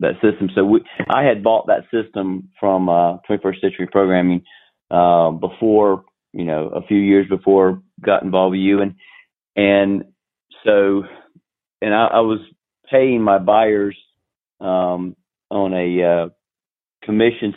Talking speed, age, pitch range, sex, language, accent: 145 wpm, 40-59, 90-105 Hz, male, English, American